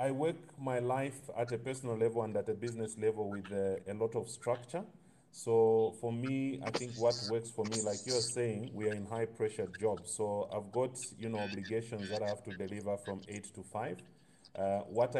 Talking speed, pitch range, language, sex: 215 wpm, 100-115 Hz, English, male